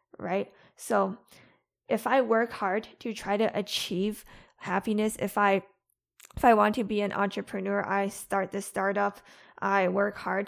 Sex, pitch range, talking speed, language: female, 190-225 Hz, 155 wpm, English